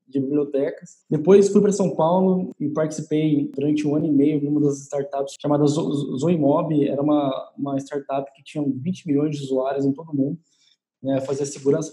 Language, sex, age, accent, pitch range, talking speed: Portuguese, male, 20-39, Brazilian, 140-160 Hz, 180 wpm